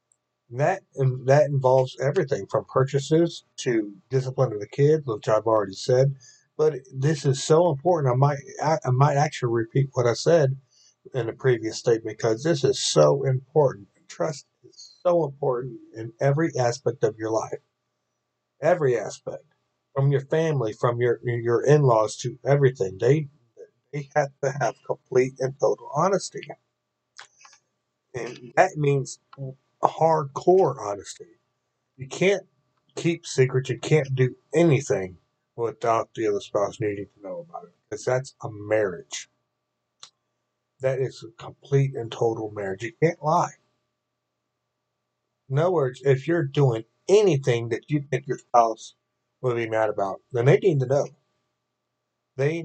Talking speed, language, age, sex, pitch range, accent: 145 wpm, English, 50-69, male, 110-145 Hz, American